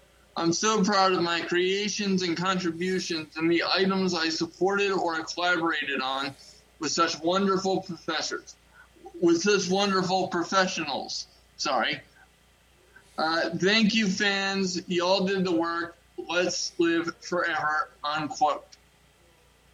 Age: 20-39